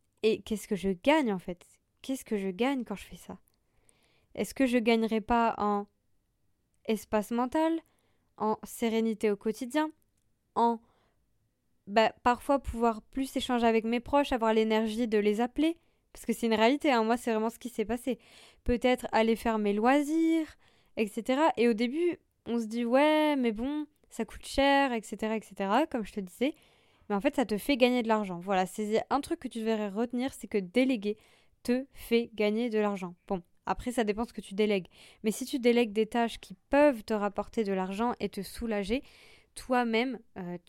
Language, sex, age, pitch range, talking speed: French, female, 20-39, 210-260 Hz, 190 wpm